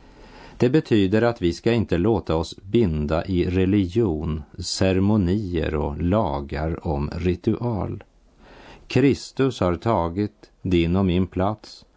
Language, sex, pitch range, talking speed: Swedish, male, 90-110 Hz, 115 wpm